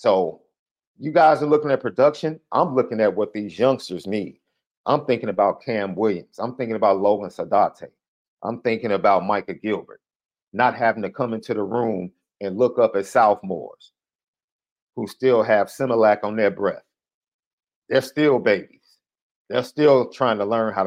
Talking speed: 165 wpm